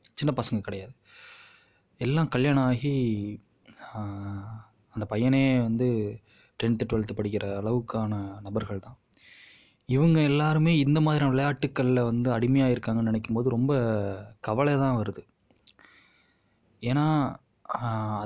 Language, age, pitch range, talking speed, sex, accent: Tamil, 20-39, 105-125 Hz, 90 wpm, male, native